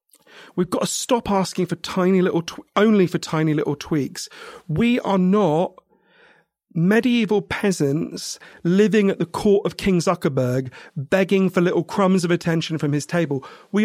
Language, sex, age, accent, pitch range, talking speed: English, male, 40-59, British, 145-190 Hz, 155 wpm